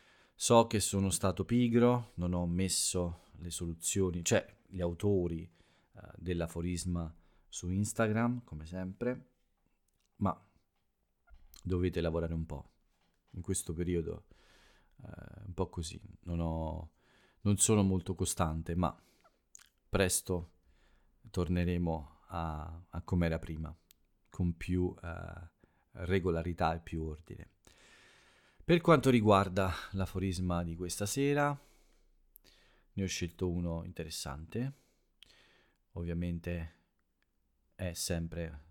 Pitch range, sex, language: 85-100 Hz, male, Italian